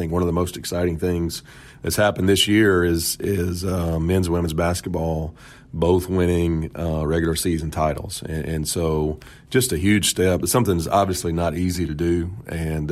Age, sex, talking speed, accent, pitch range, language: 40-59, male, 180 wpm, American, 80-90 Hz, English